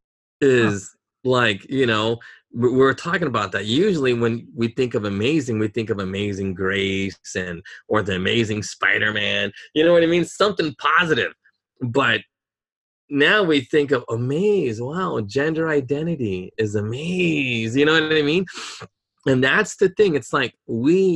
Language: English